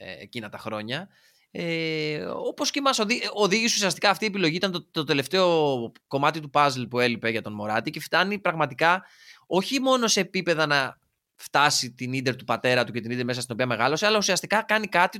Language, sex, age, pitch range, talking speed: Greek, male, 20-39, 140-205 Hz, 190 wpm